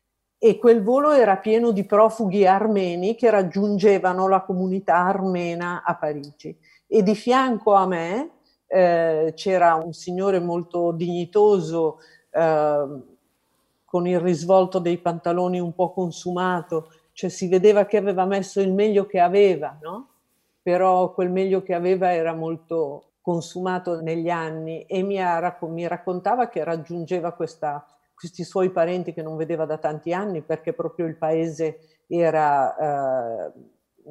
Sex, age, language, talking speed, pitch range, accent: female, 50-69, Italian, 135 wpm, 160-190 Hz, native